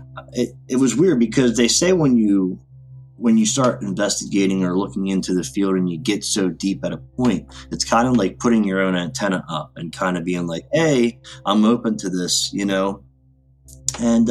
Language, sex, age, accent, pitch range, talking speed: English, male, 20-39, American, 90-120 Hz, 200 wpm